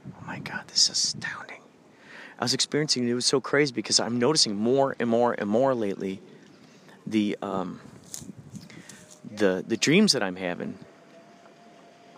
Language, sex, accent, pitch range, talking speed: English, male, American, 110-140 Hz, 150 wpm